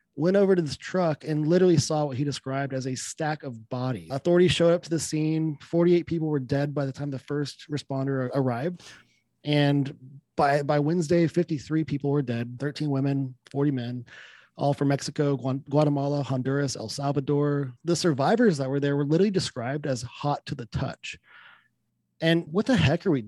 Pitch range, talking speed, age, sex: 135-170 Hz, 185 wpm, 30-49, male